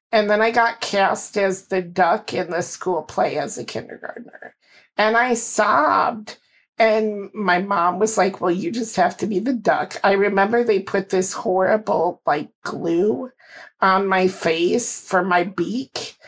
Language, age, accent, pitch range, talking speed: English, 50-69, American, 185-225 Hz, 165 wpm